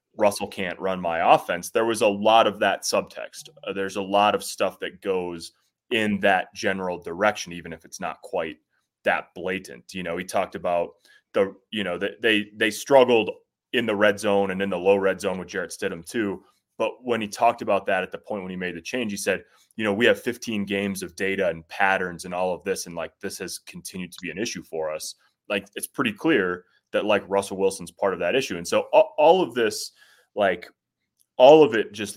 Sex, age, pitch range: male, 20-39, 85-115 Hz